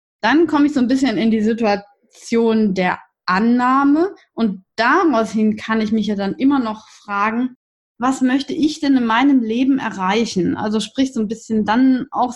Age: 20-39